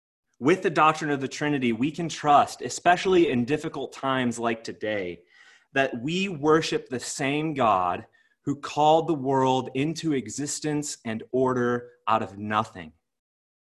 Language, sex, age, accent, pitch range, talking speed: English, male, 30-49, American, 120-155 Hz, 140 wpm